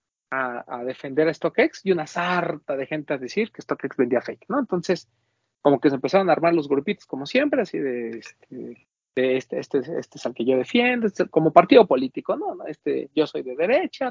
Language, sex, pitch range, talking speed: Spanish, male, 130-190 Hz, 215 wpm